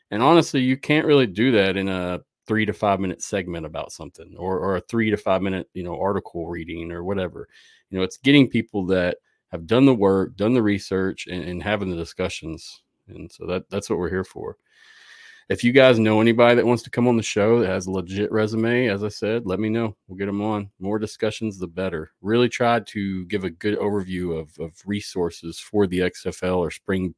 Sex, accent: male, American